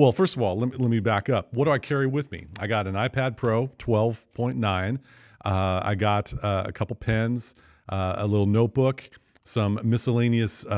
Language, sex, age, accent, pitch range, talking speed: English, male, 40-59, American, 100-125 Hz, 185 wpm